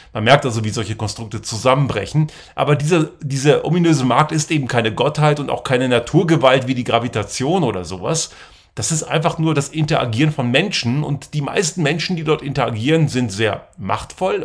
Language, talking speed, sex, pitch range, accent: German, 180 wpm, male, 120-160 Hz, German